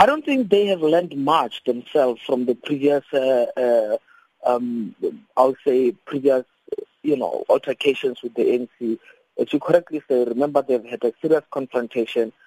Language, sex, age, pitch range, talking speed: English, male, 20-39, 120-200 Hz, 160 wpm